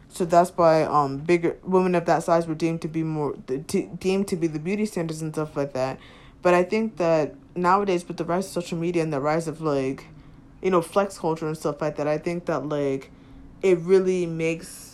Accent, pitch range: American, 150-185 Hz